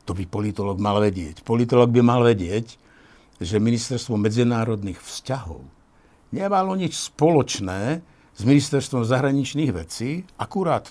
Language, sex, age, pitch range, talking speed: Slovak, male, 60-79, 105-140 Hz, 115 wpm